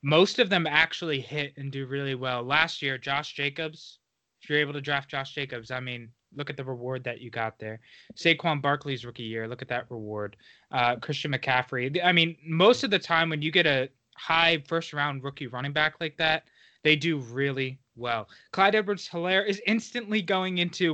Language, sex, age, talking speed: English, male, 20-39, 200 wpm